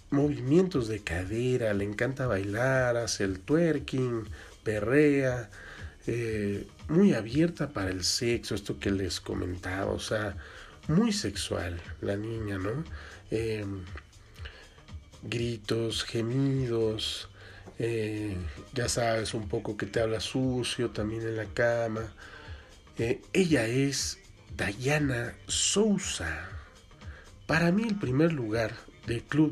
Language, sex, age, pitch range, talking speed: Spanish, male, 50-69, 100-130 Hz, 110 wpm